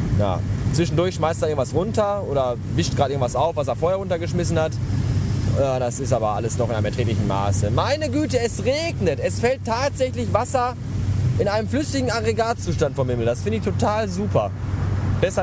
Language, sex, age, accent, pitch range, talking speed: German, male, 20-39, German, 105-135 Hz, 180 wpm